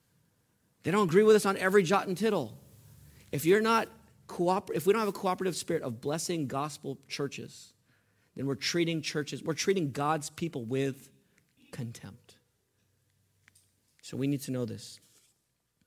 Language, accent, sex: English, American, male